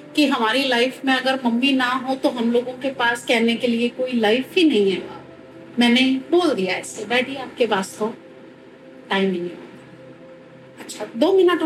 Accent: Indian